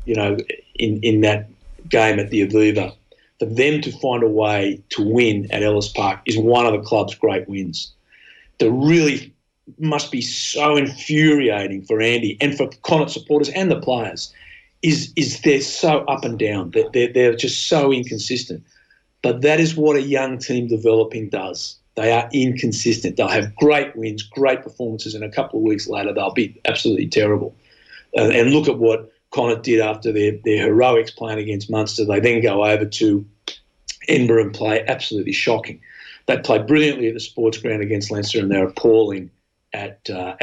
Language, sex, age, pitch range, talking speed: English, male, 50-69, 110-140 Hz, 180 wpm